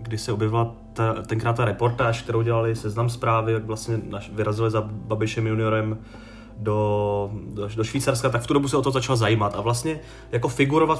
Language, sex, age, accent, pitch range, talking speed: Czech, male, 30-49, native, 115-140 Hz, 190 wpm